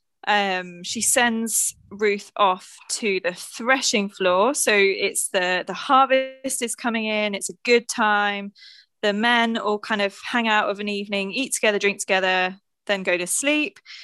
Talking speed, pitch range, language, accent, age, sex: 165 wpm, 195-235 Hz, English, British, 20-39, female